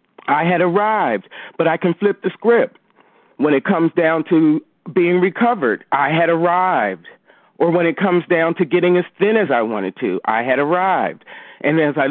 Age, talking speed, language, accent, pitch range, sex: 40-59, 190 wpm, English, American, 165-210 Hz, male